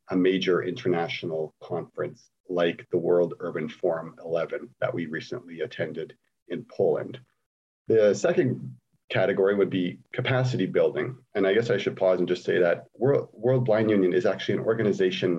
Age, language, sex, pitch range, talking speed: 40-59, English, male, 90-125 Hz, 160 wpm